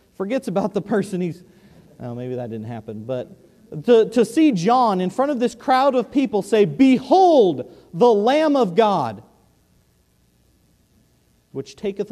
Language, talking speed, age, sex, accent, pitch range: English, 150 wpm, 40-59, male, American, 135-215 Hz